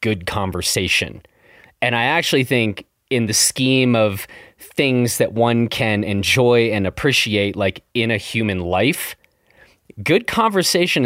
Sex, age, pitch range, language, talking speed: male, 30-49, 105-135 Hz, English, 130 wpm